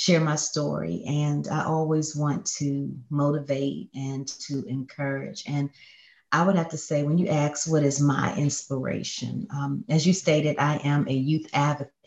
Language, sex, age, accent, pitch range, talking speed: English, female, 40-59, American, 140-160 Hz, 170 wpm